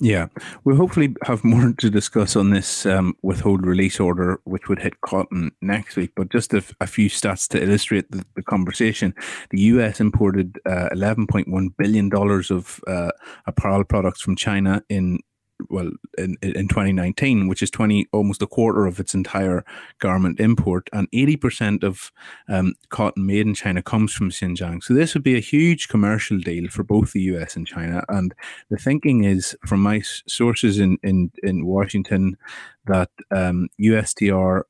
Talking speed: 170 wpm